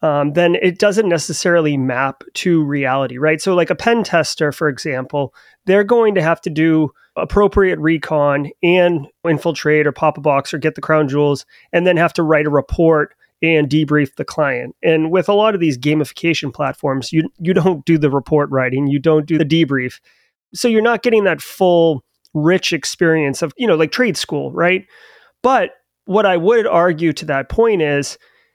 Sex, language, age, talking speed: male, English, 30-49, 190 wpm